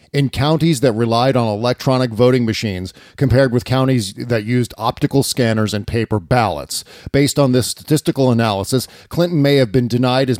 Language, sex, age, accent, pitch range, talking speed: English, male, 40-59, American, 115-140 Hz, 165 wpm